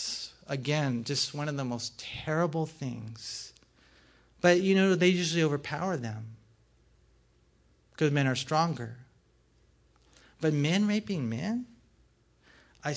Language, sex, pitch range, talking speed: English, male, 125-185 Hz, 110 wpm